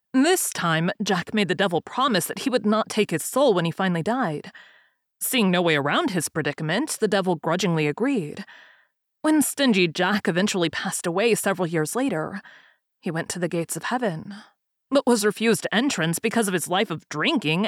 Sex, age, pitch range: female, 30-49, 175-225 Hz